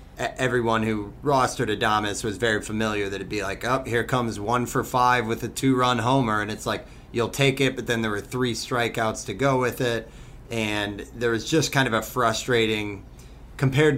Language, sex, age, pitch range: English, male, 30-49, 110-130 Hz